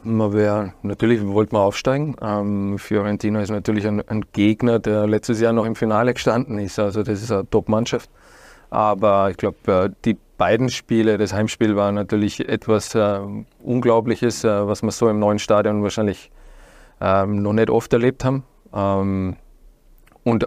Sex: male